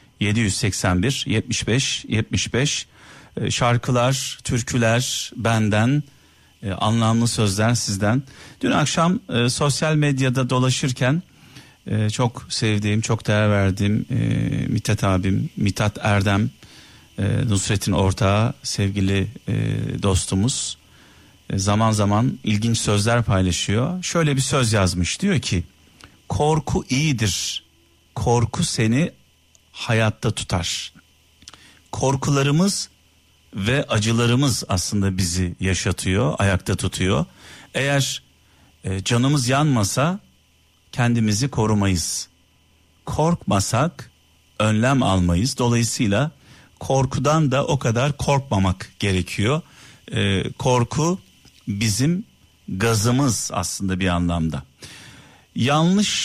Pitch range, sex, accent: 95-130 Hz, male, native